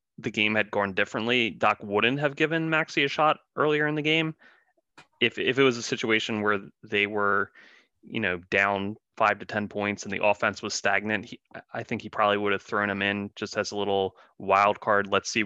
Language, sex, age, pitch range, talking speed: English, male, 20-39, 100-110 Hz, 215 wpm